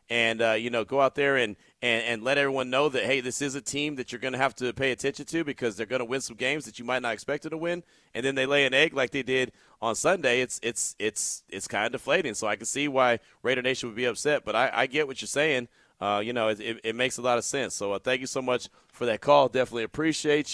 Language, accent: English, American